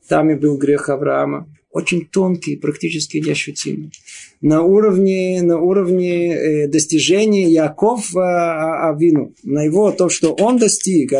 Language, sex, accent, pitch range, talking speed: Russian, male, native, 145-195 Hz, 115 wpm